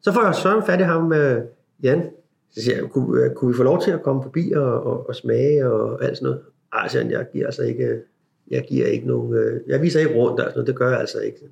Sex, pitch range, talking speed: male, 115-150 Hz, 270 wpm